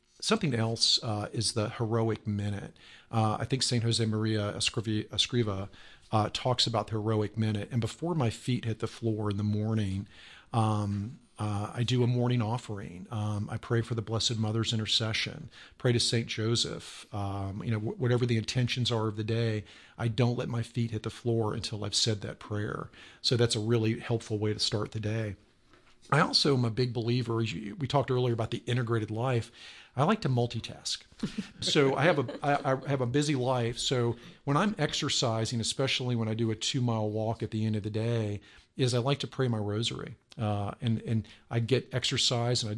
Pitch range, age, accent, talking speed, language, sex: 110-125 Hz, 40-59, American, 200 wpm, English, male